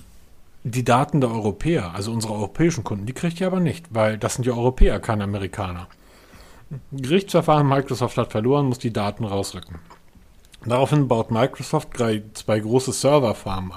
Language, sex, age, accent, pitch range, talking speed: German, male, 40-59, German, 110-150 Hz, 150 wpm